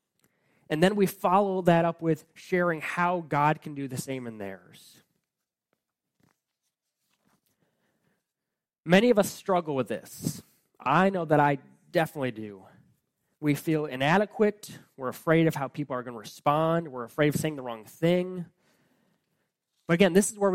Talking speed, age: 150 wpm, 20-39